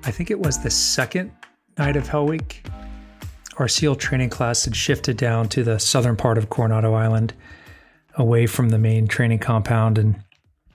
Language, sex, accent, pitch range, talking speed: English, male, American, 115-130 Hz, 175 wpm